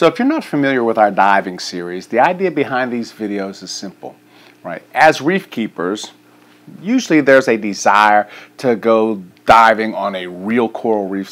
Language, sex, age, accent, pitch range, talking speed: English, male, 50-69, American, 105-140 Hz, 170 wpm